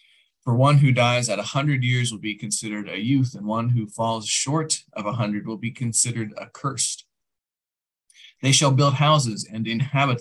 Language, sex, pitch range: English, male, 110-135 Hz